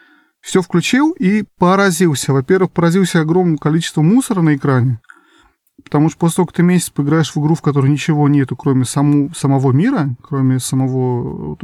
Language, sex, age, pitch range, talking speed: Russian, male, 20-39, 135-170 Hz, 165 wpm